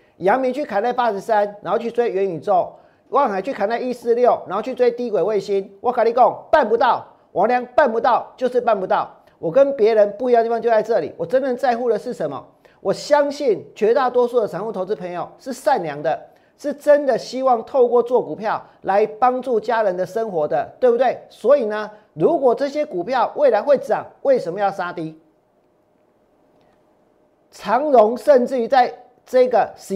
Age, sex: 40-59, male